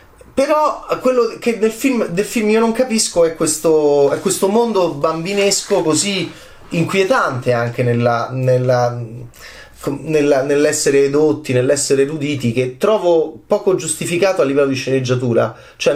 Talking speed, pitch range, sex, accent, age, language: 130 wpm, 130-195 Hz, male, native, 30-49, Italian